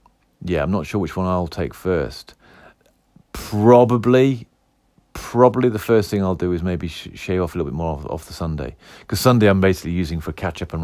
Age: 40-59